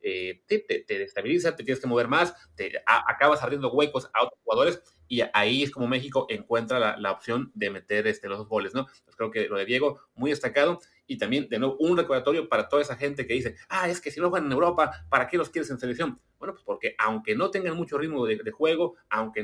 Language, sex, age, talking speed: Spanish, male, 30-49, 245 wpm